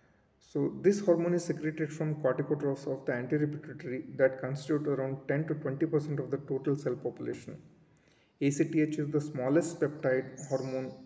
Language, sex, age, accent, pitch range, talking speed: English, male, 30-49, Indian, 130-155 Hz, 145 wpm